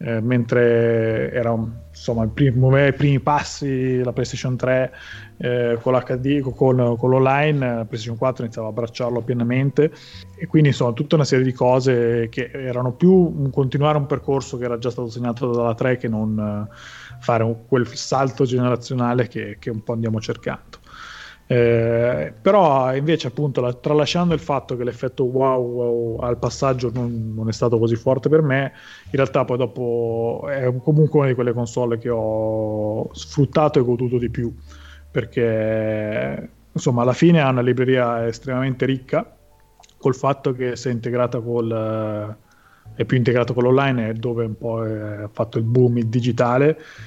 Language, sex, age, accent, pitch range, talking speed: Italian, male, 30-49, native, 115-130 Hz, 155 wpm